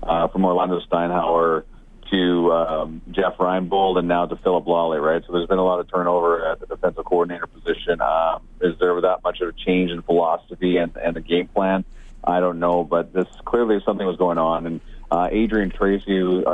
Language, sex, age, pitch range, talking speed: English, male, 30-49, 85-95 Hz, 205 wpm